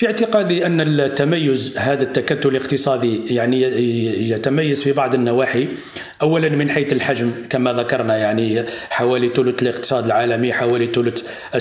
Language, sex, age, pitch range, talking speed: Arabic, male, 40-59, 130-150 Hz, 130 wpm